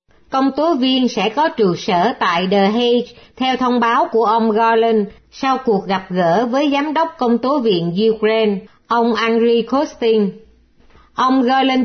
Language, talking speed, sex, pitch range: Vietnamese, 160 wpm, female, 200-250 Hz